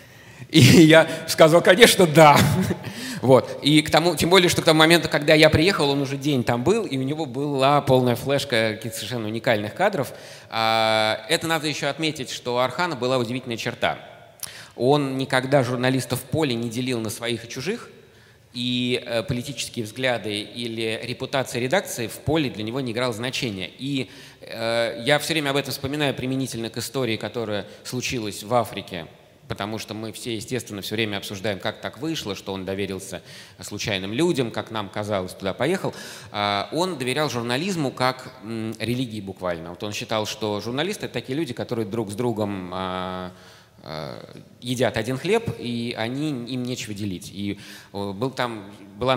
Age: 20-39